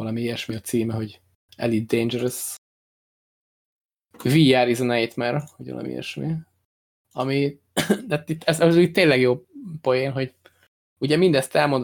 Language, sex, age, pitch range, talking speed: Hungarian, male, 20-39, 115-140 Hz, 120 wpm